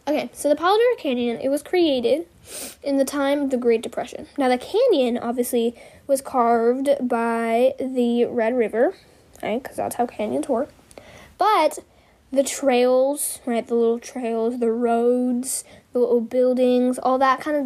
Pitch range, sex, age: 245-315 Hz, female, 10-29